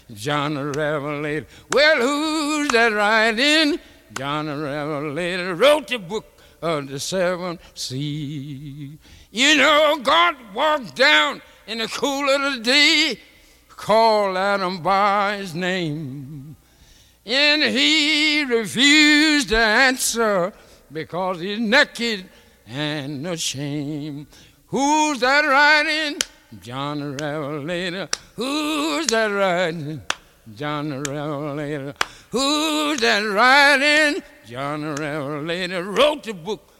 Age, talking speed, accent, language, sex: 60-79, 100 wpm, American, Polish, male